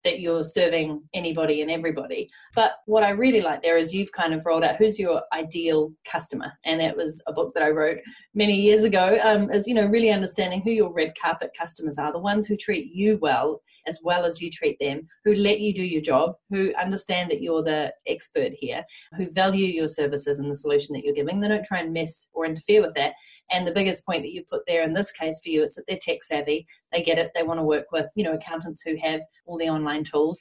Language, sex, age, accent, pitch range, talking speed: English, female, 30-49, Australian, 155-205 Hz, 245 wpm